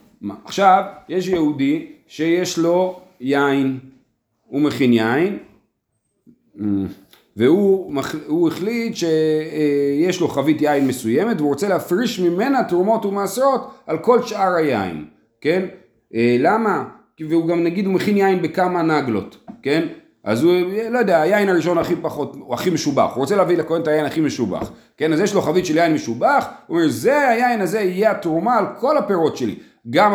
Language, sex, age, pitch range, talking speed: Hebrew, male, 40-59, 140-200 Hz, 135 wpm